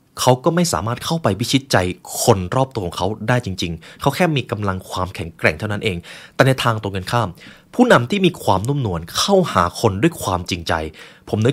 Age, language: 20-39, Thai